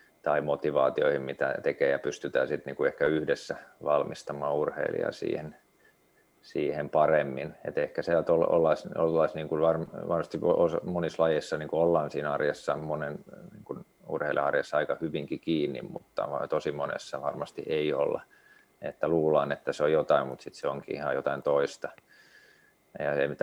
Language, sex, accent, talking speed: Finnish, male, native, 120 wpm